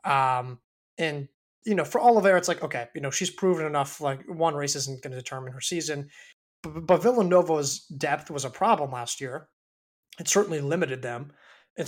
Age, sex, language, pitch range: 20-39, male, English, 135-175 Hz